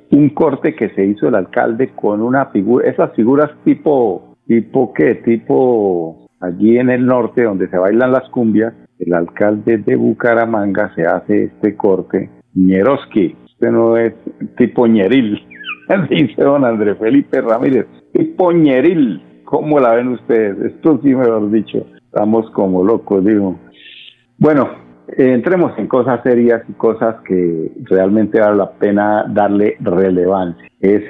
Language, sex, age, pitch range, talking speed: Spanish, male, 50-69, 90-115 Hz, 145 wpm